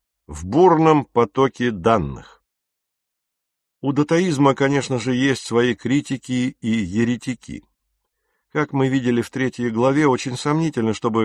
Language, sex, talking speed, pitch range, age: English, male, 115 wpm, 110-135 Hz, 50-69